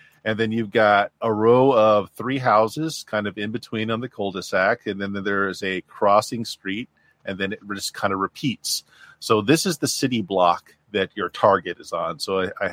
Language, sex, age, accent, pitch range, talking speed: English, male, 40-59, American, 100-135 Hz, 210 wpm